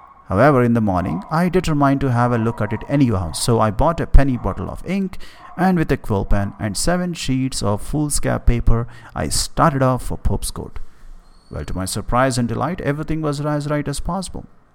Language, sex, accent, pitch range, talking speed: English, male, Indian, 100-145 Hz, 205 wpm